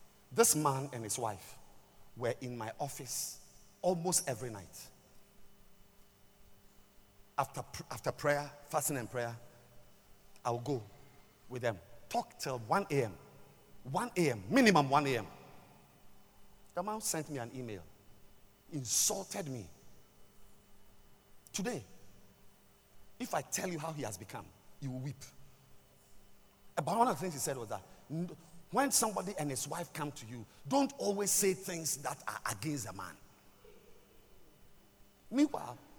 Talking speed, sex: 135 wpm, male